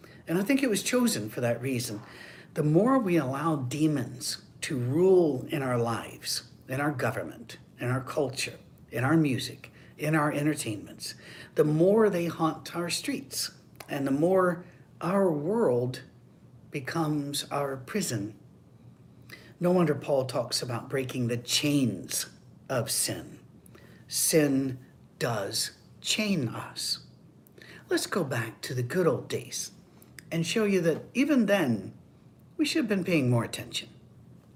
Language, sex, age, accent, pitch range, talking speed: English, male, 60-79, American, 125-170 Hz, 140 wpm